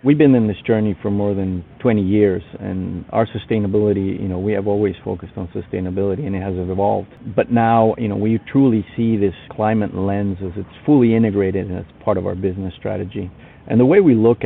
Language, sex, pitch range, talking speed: English, male, 95-110 Hz, 210 wpm